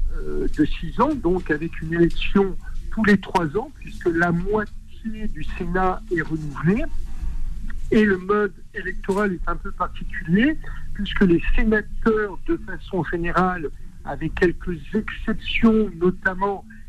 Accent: French